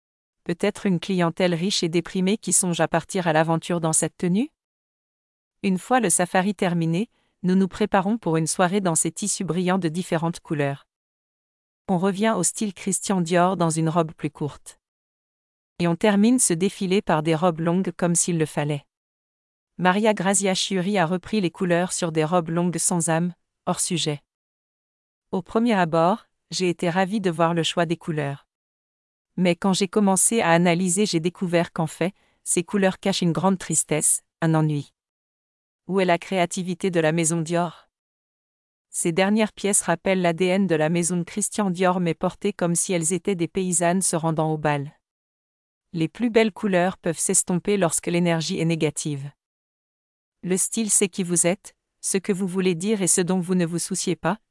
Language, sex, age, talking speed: English, female, 40-59, 180 wpm